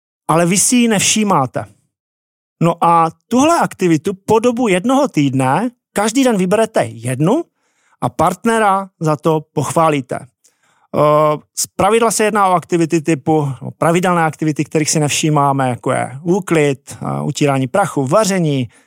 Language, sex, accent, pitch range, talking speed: Czech, male, native, 155-200 Hz, 130 wpm